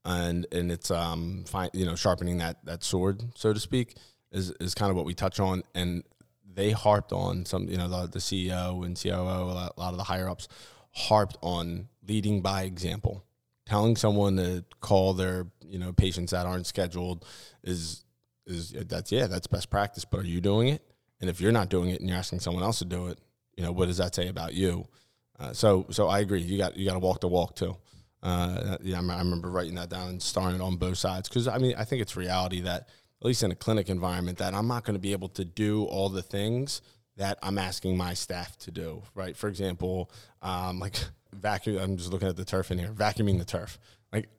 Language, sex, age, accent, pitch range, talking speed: English, male, 20-39, American, 90-105 Hz, 225 wpm